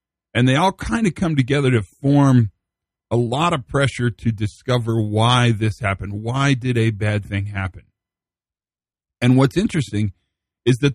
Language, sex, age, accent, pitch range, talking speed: English, male, 40-59, American, 100-125 Hz, 160 wpm